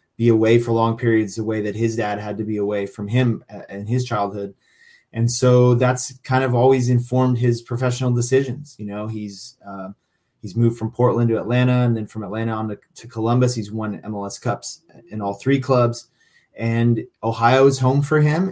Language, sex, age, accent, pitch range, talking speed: English, male, 20-39, American, 110-125 Hz, 200 wpm